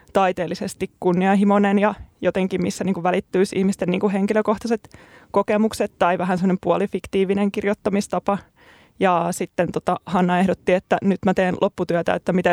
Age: 20-39